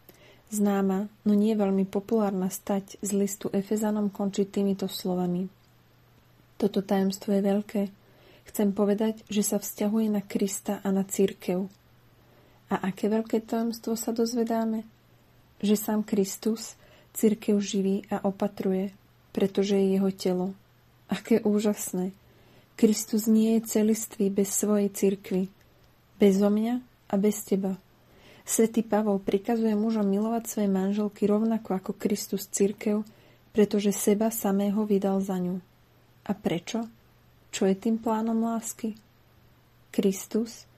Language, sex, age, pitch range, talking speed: Slovak, female, 30-49, 195-215 Hz, 120 wpm